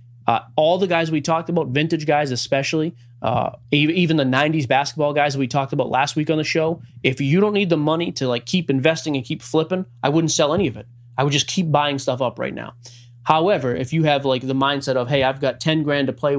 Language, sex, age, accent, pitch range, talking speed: English, male, 30-49, American, 130-160 Hz, 245 wpm